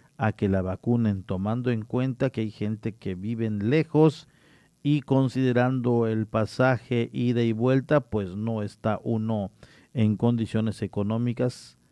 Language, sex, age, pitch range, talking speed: Spanish, male, 50-69, 105-130 Hz, 140 wpm